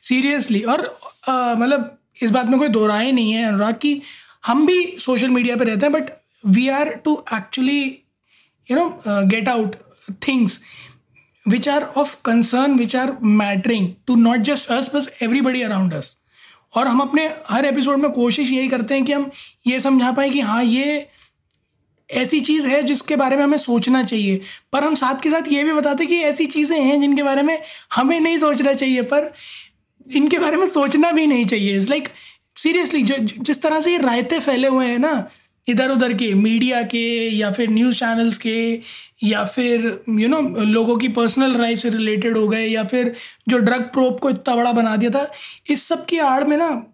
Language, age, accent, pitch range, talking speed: Hindi, 20-39, native, 230-285 Hz, 195 wpm